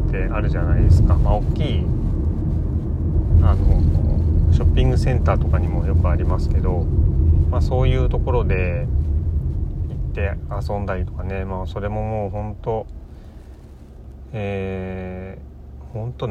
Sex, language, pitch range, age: male, Japanese, 80-105 Hz, 30-49